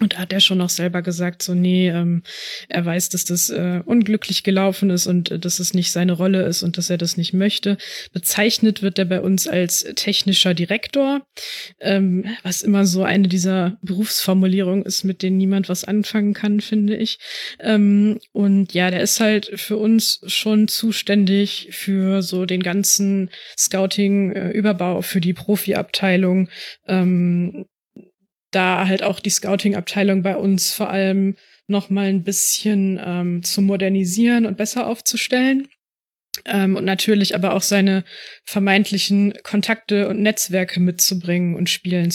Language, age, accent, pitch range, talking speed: German, 20-39, German, 185-210 Hz, 155 wpm